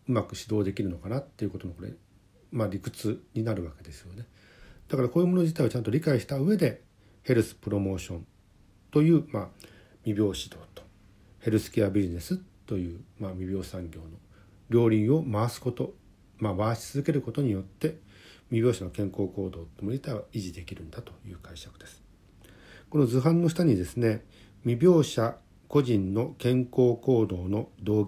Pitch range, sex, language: 95-125 Hz, male, Japanese